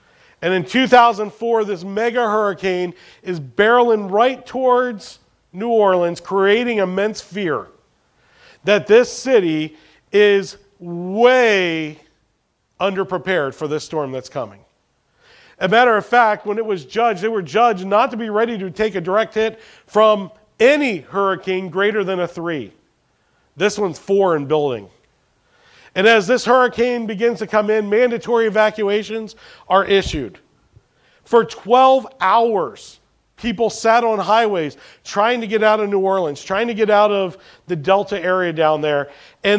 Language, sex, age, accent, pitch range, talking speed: English, male, 40-59, American, 185-225 Hz, 145 wpm